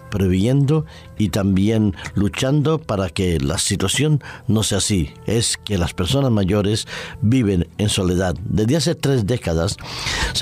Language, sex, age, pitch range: Spanish, male, 50-69, 95-125 Hz